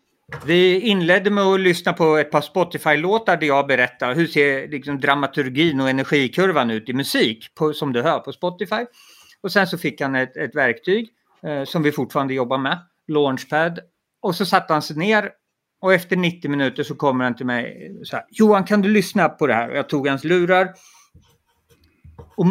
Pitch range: 140-195 Hz